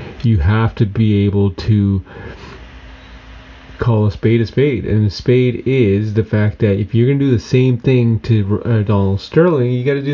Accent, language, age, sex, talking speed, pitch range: American, English, 30-49, male, 195 wpm, 100-125 Hz